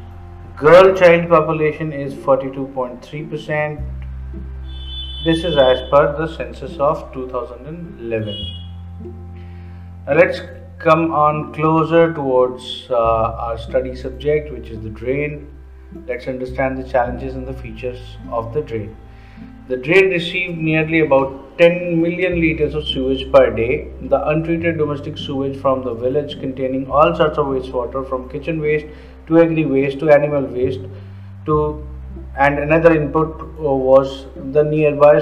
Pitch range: 115-155 Hz